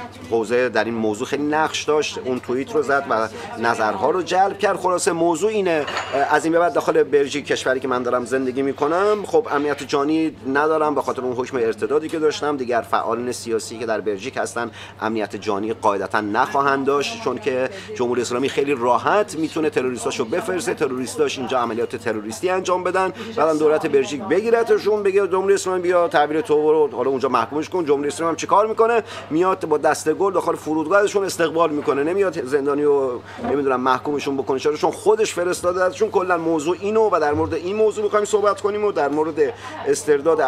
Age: 40-59